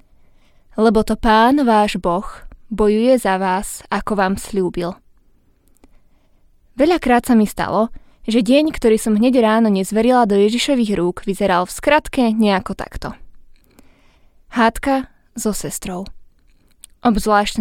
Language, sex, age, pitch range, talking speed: Slovak, female, 20-39, 195-235 Hz, 115 wpm